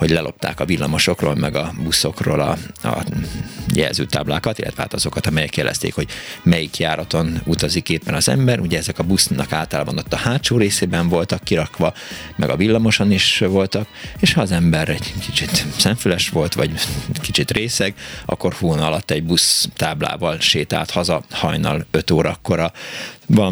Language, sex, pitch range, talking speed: Hungarian, male, 85-115 Hz, 155 wpm